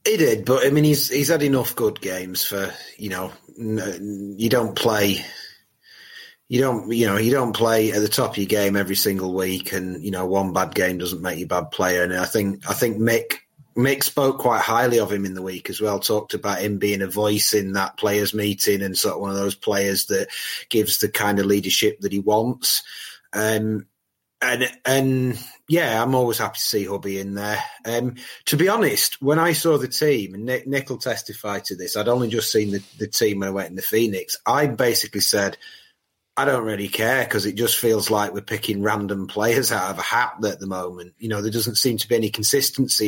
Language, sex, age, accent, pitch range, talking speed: English, male, 30-49, British, 100-135 Hz, 225 wpm